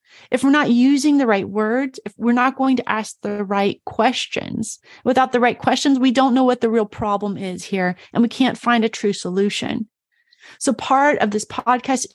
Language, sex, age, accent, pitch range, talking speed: English, female, 30-49, American, 210-255 Hz, 205 wpm